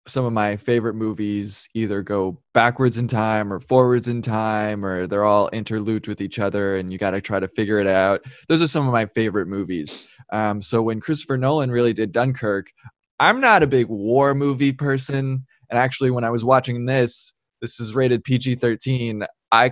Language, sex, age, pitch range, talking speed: English, male, 20-39, 110-130 Hz, 195 wpm